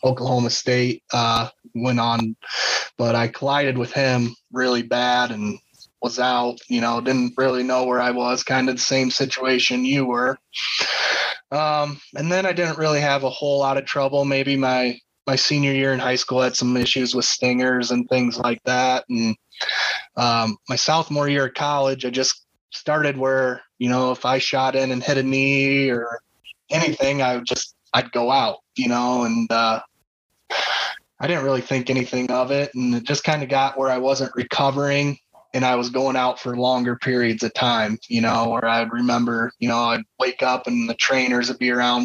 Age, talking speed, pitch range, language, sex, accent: 20-39, 195 wpm, 120-135 Hz, English, male, American